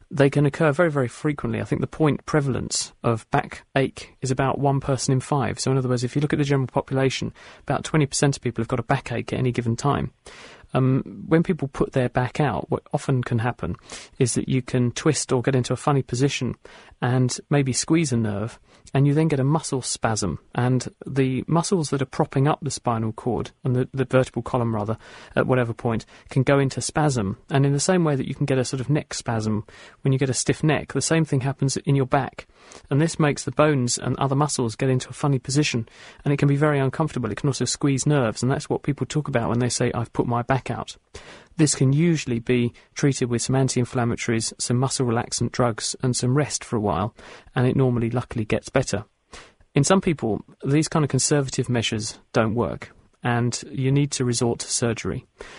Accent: British